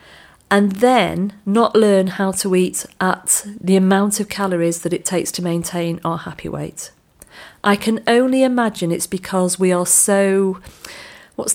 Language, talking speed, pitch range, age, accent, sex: English, 155 wpm, 170-210 Hz, 40-59, British, female